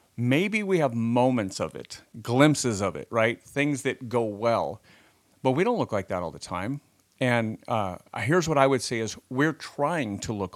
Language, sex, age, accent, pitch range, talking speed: English, male, 40-59, American, 115-140 Hz, 200 wpm